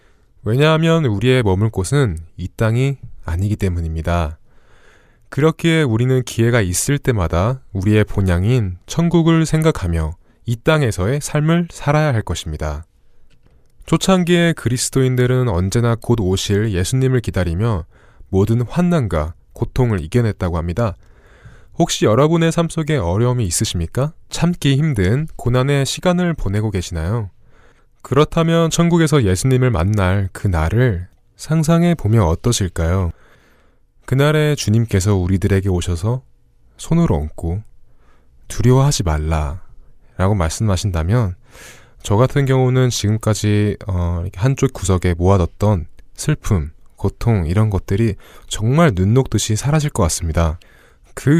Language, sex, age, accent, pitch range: Korean, male, 20-39, native, 95-135 Hz